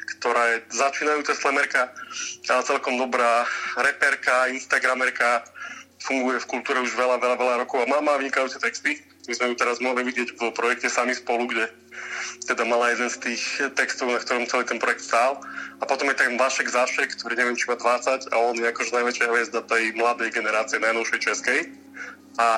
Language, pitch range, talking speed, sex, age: Slovak, 120-140 Hz, 185 wpm, male, 20-39